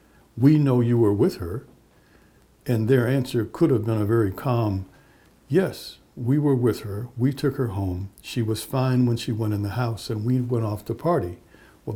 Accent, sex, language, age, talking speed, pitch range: American, male, English, 60-79, 200 wpm, 105-130 Hz